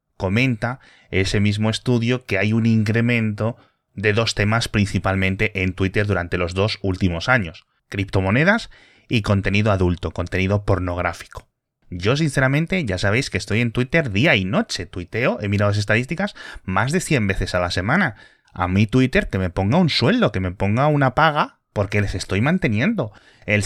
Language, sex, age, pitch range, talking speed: Spanish, male, 30-49, 95-135 Hz, 165 wpm